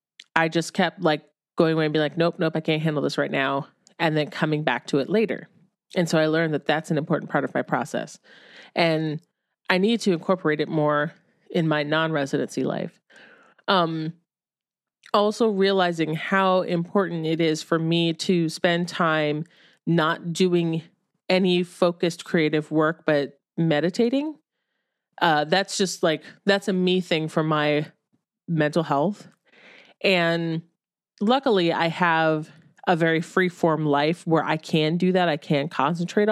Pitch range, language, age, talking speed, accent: 155-190 Hz, English, 30-49, 160 wpm, American